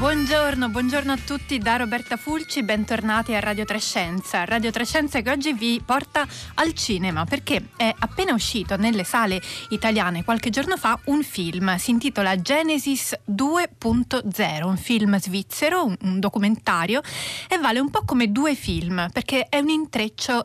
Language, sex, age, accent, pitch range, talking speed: Italian, female, 20-39, native, 205-275 Hz, 150 wpm